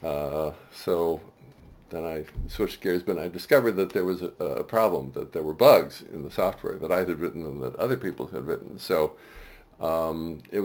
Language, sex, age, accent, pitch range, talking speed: English, male, 50-69, American, 90-105 Hz, 195 wpm